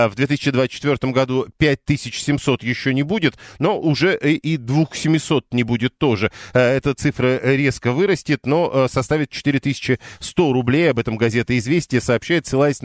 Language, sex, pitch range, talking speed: Russian, male, 120-145 Hz, 130 wpm